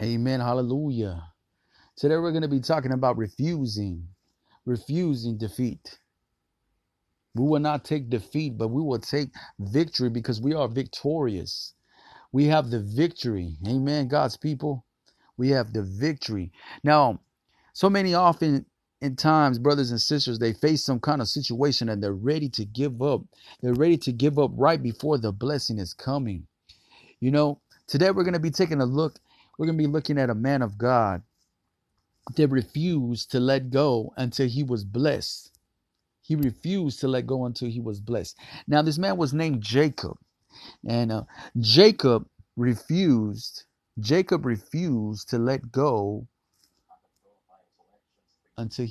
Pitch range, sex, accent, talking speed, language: 115-150 Hz, male, American, 150 wpm, English